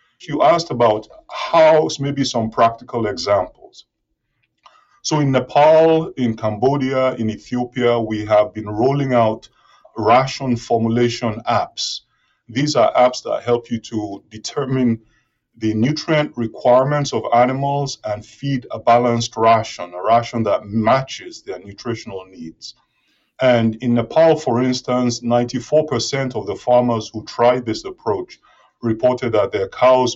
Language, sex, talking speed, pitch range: English, male, 130 wpm, 115-140 Hz